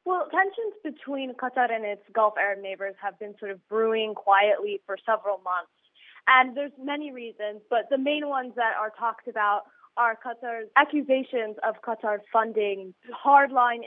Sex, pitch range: female, 220-275 Hz